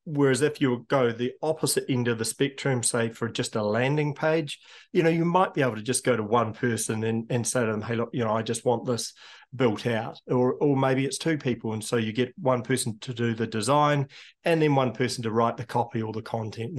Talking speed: 250 wpm